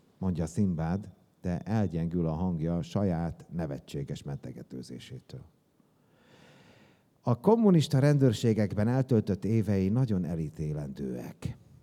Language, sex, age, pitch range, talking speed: Hungarian, male, 60-79, 80-115 Hz, 80 wpm